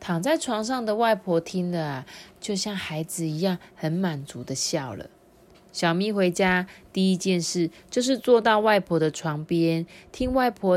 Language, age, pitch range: Chinese, 20-39, 170-220 Hz